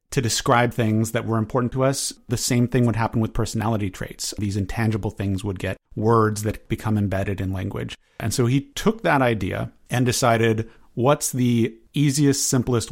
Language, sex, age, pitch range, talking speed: English, male, 30-49, 110-135 Hz, 180 wpm